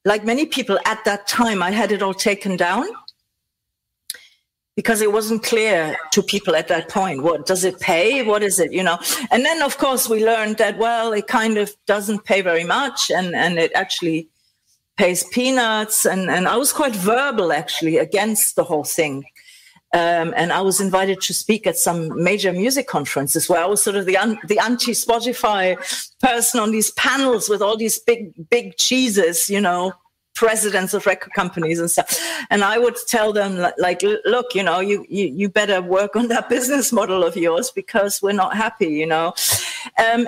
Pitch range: 185-235 Hz